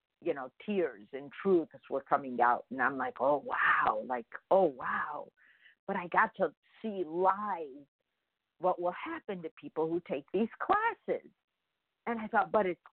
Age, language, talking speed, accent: 50-69, English, 165 wpm, American